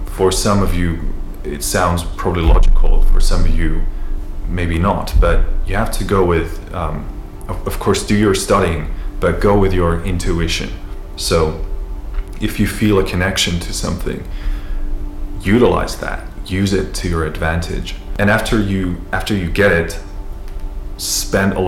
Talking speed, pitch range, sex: 155 wpm, 80-100 Hz, male